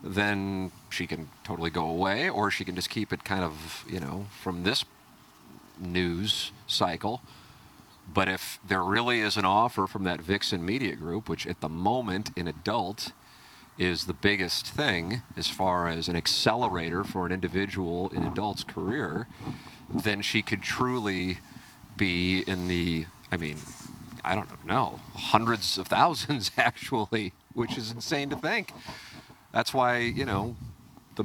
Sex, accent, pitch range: male, American, 90-110 Hz